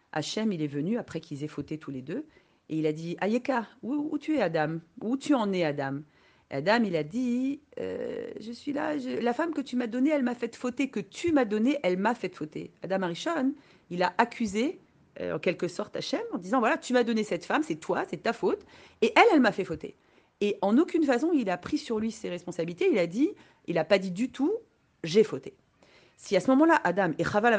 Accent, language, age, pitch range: French, French, 40-59, 165-250 Hz